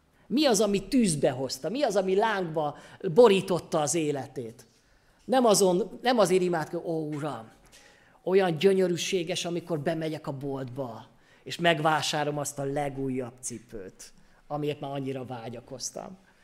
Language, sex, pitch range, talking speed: Hungarian, male, 135-175 Hz, 125 wpm